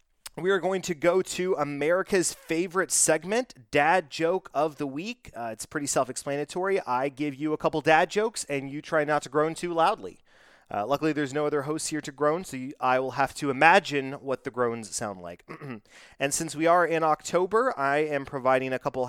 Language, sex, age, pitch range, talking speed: English, male, 30-49, 120-165 Hz, 205 wpm